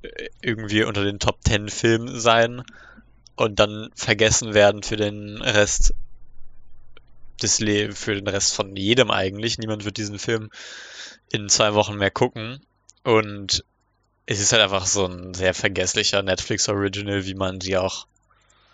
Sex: male